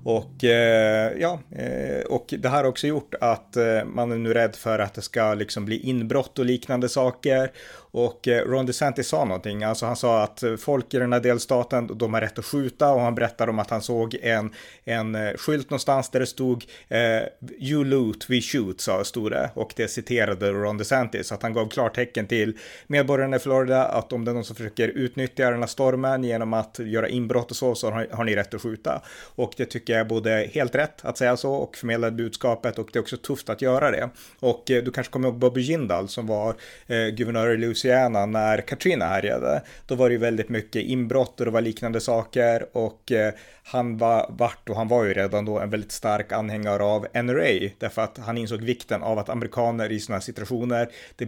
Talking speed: 215 wpm